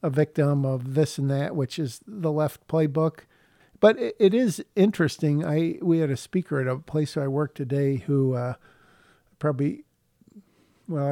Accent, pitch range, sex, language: American, 140-160 Hz, male, English